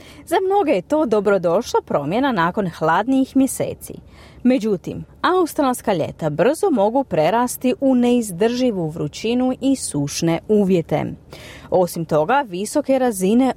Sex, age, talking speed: female, 30-49, 110 wpm